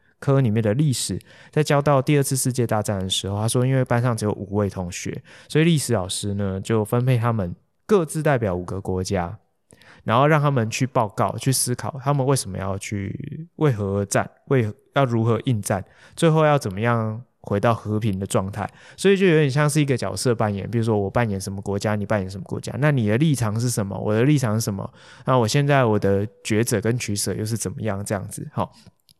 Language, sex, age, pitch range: Chinese, male, 20-39, 105-135 Hz